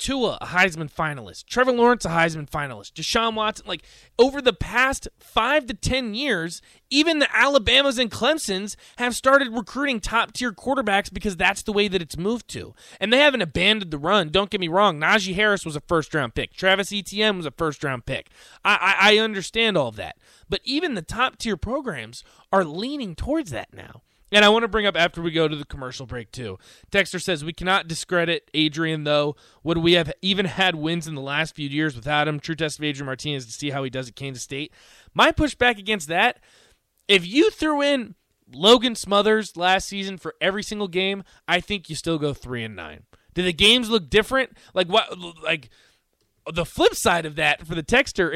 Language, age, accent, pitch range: English, 20-39, American, 160-225 Hz